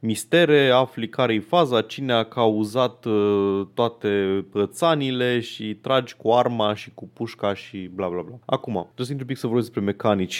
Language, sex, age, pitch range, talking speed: Romanian, male, 20-39, 105-135 Hz, 165 wpm